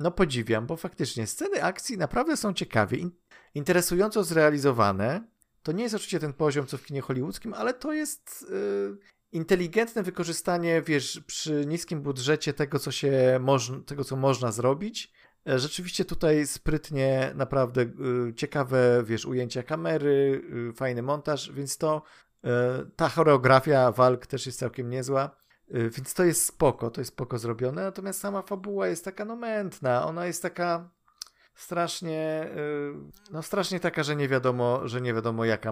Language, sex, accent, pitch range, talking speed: Polish, male, native, 125-170 Hz, 150 wpm